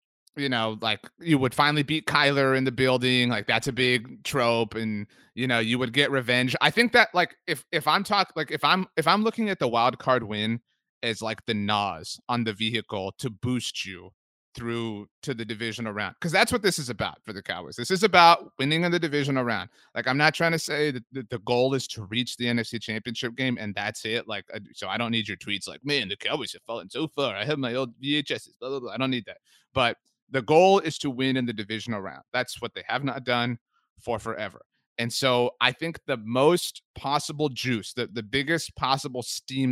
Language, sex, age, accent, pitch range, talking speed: English, male, 30-49, American, 115-150 Hz, 225 wpm